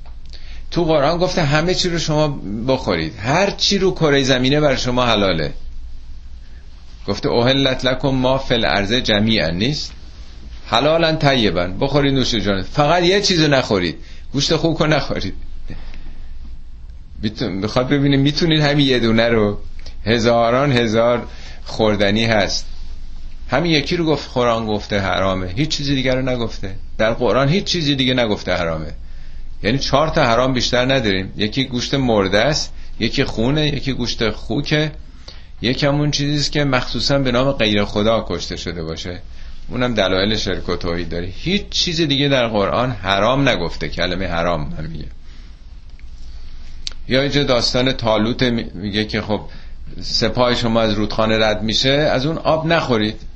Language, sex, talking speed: Persian, male, 145 wpm